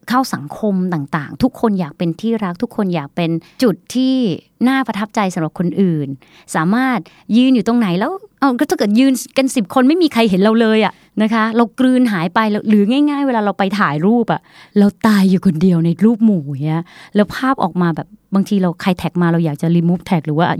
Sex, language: female, Thai